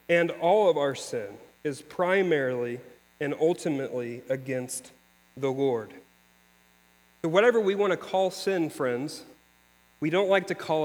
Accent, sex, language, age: American, male, English, 40-59